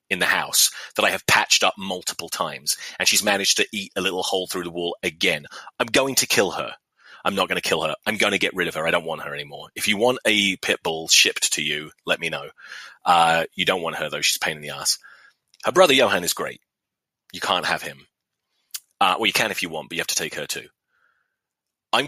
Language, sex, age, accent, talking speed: English, male, 30-49, British, 255 wpm